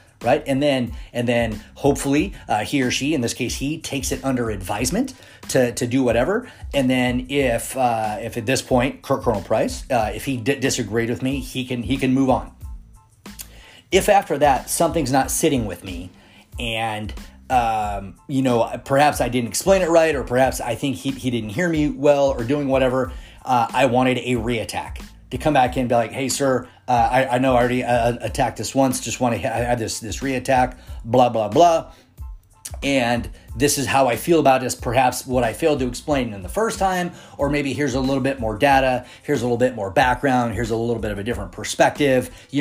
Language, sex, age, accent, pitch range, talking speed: English, male, 30-49, American, 115-140 Hz, 215 wpm